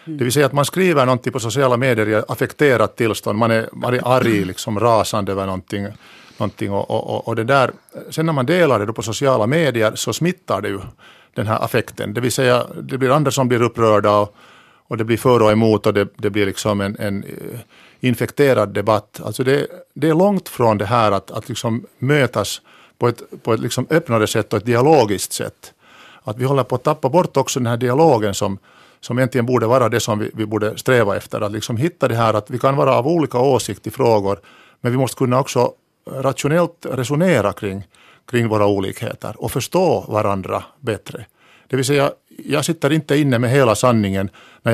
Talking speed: 205 wpm